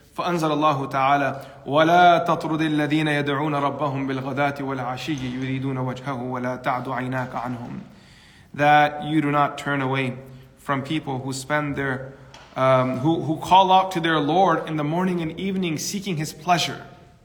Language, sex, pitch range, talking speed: English, male, 140-210 Hz, 95 wpm